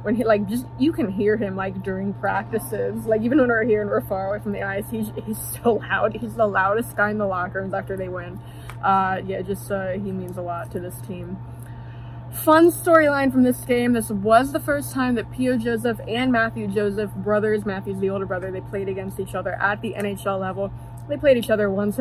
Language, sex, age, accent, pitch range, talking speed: English, female, 20-39, American, 185-240 Hz, 230 wpm